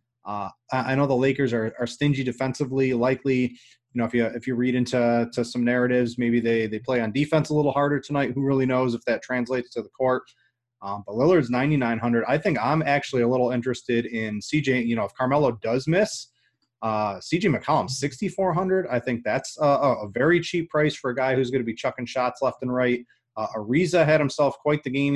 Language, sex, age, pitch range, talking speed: English, male, 30-49, 120-140 Hz, 210 wpm